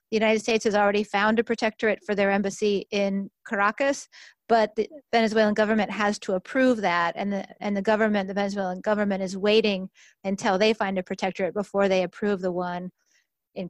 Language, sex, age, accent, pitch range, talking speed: English, female, 30-49, American, 195-220 Hz, 185 wpm